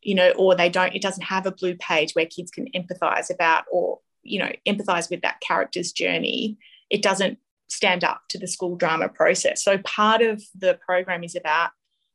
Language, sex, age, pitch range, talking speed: English, female, 20-39, 175-210 Hz, 200 wpm